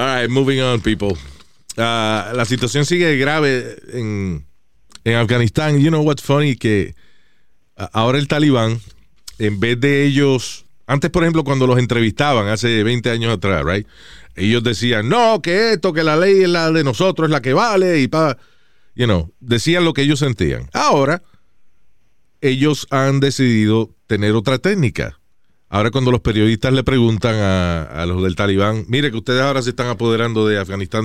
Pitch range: 105-135 Hz